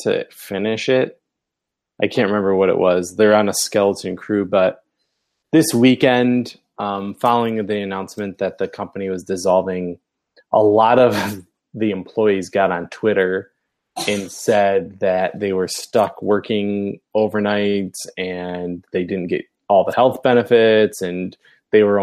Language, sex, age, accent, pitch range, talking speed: English, male, 20-39, American, 95-120 Hz, 145 wpm